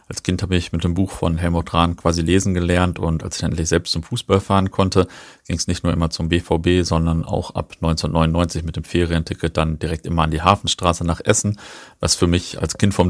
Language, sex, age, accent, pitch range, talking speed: German, male, 40-59, German, 85-100 Hz, 230 wpm